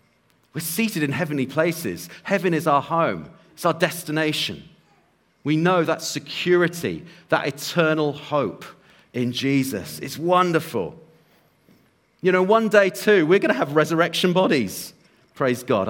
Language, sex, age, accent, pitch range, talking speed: English, male, 40-59, British, 150-185 Hz, 135 wpm